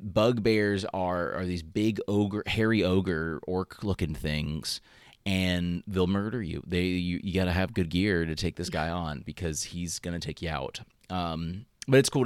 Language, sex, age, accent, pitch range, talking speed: English, male, 30-49, American, 85-105 Hz, 190 wpm